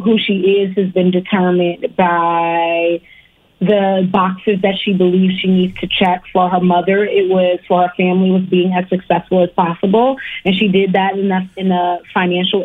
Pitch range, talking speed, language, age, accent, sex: 185-210 Hz, 180 wpm, English, 20-39, American, female